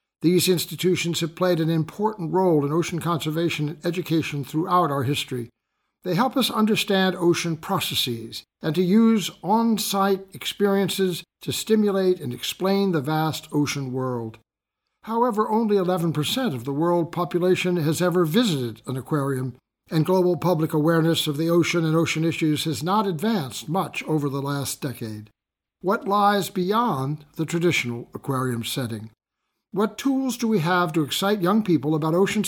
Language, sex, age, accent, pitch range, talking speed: English, male, 60-79, American, 145-190 Hz, 150 wpm